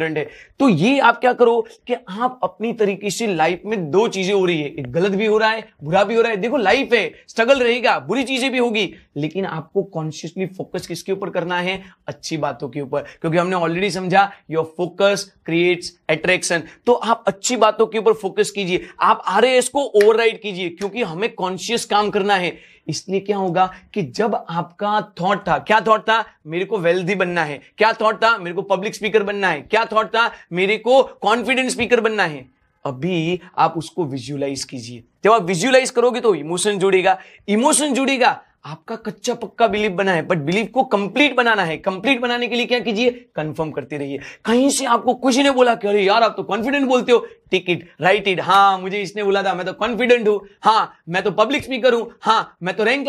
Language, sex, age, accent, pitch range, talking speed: Hindi, male, 30-49, native, 180-230 Hz, 190 wpm